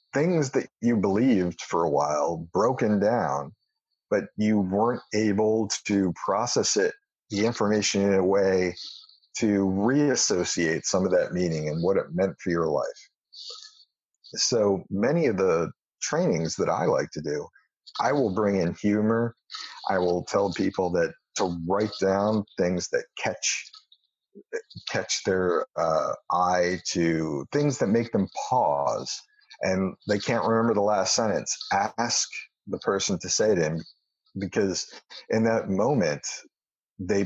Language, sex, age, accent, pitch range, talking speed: English, male, 50-69, American, 90-145 Hz, 145 wpm